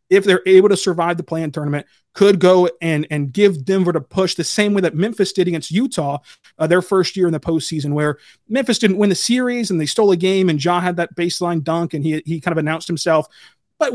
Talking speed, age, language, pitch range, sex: 240 wpm, 30-49, English, 165-195 Hz, male